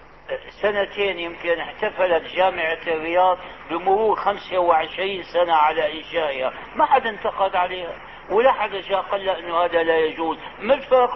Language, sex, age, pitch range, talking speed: Arabic, male, 60-79, 165-215 Hz, 130 wpm